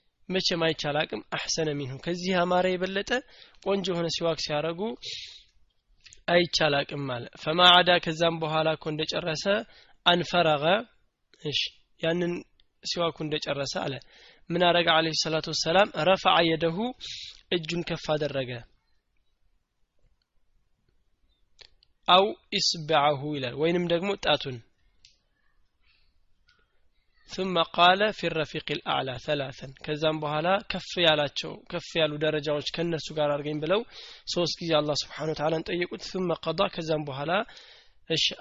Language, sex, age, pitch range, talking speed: Amharic, male, 20-39, 150-180 Hz, 120 wpm